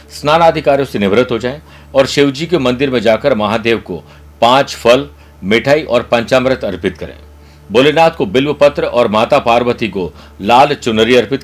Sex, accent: male, native